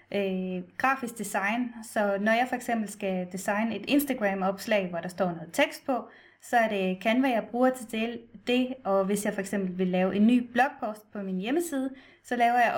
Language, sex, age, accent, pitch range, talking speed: Danish, female, 20-39, native, 190-245 Hz, 185 wpm